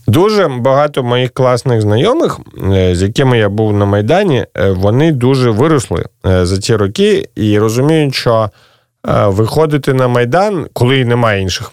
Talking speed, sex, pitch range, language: 135 wpm, male, 95-130 Hz, Russian